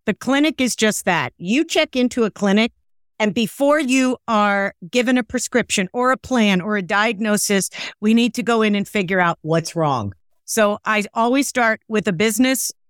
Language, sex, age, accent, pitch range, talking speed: English, female, 50-69, American, 200-265 Hz, 185 wpm